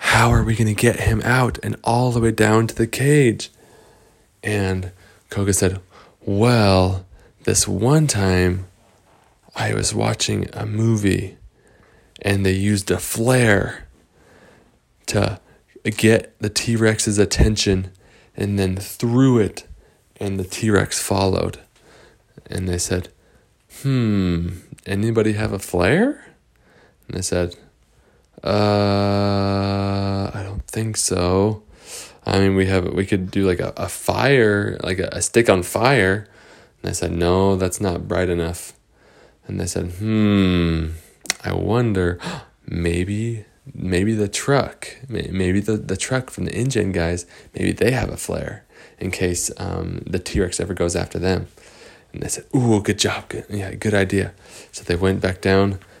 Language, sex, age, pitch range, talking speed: English, male, 20-39, 95-110 Hz, 145 wpm